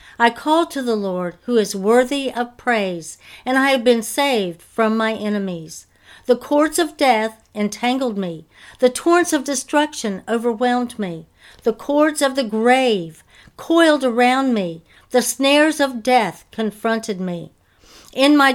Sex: female